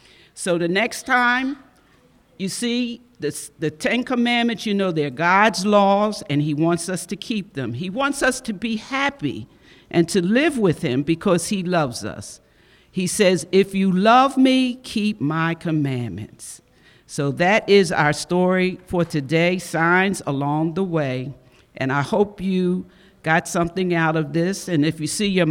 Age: 50-69